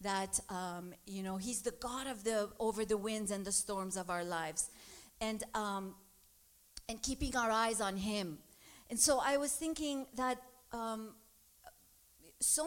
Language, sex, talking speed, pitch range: English, female, 160 wpm, 220-270 Hz